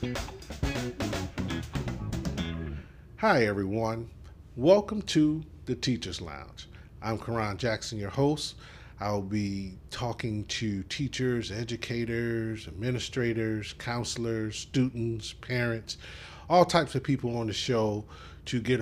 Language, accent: English, American